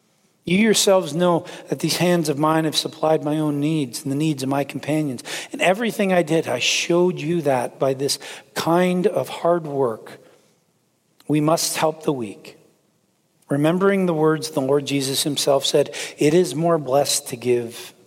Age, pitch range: 40-59, 140-170 Hz